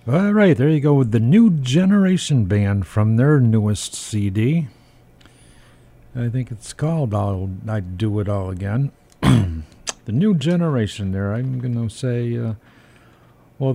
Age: 50-69